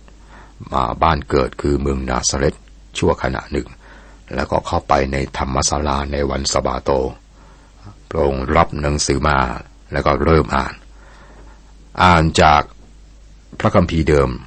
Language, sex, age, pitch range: Thai, male, 60-79, 70-95 Hz